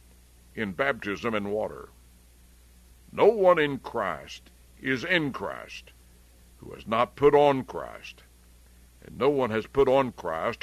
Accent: American